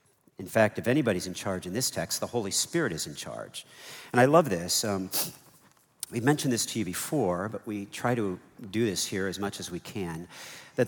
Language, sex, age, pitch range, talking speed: English, male, 50-69, 95-125 Hz, 215 wpm